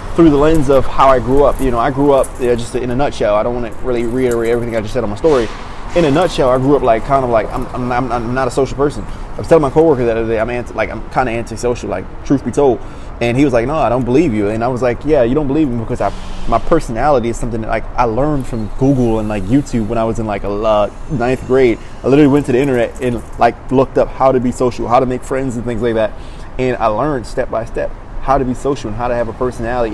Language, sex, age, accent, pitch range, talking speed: English, male, 20-39, American, 110-135 Hz, 295 wpm